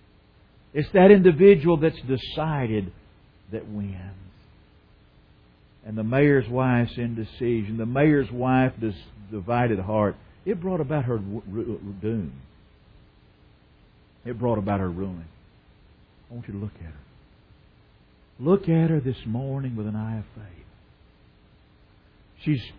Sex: male